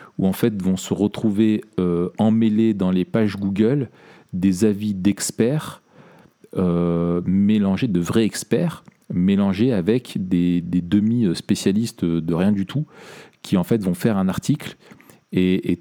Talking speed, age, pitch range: 145 wpm, 40-59, 90-110 Hz